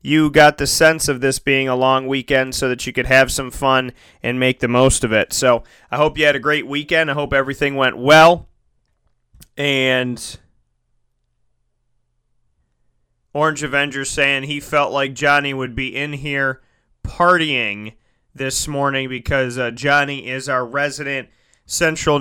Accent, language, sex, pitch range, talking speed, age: American, English, male, 130-150 Hz, 155 wpm, 30-49